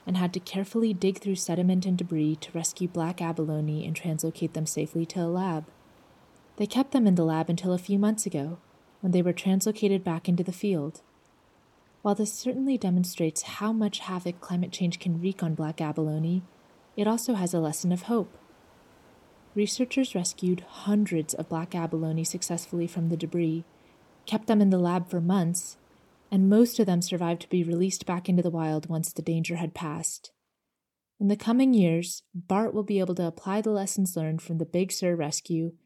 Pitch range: 170-200 Hz